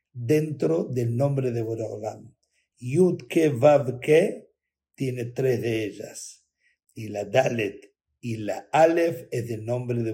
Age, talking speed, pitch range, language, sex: 60-79, 135 wpm, 130-195 Hz, Spanish, male